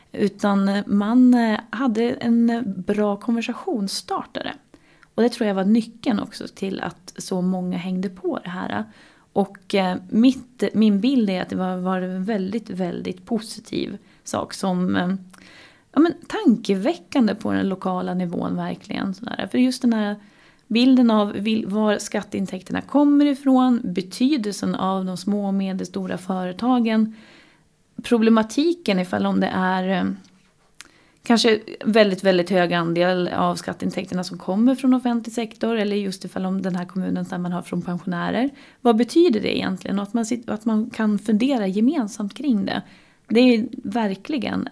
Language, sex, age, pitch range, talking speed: Swedish, female, 30-49, 190-235 Hz, 140 wpm